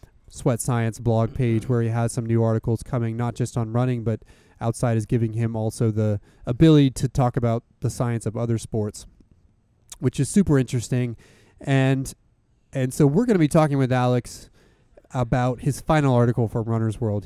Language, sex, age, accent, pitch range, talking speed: English, male, 30-49, American, 115-130 Hz, 180 wpm